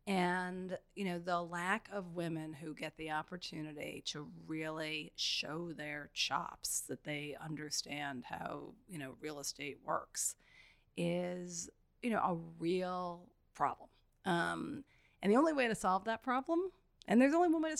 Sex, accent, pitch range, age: female, American, 165-235 Hz, 40-59